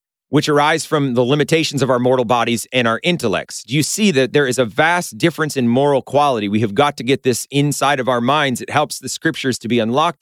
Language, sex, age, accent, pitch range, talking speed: English, male, 30-49, American, 125-155 Hz, 240 wpm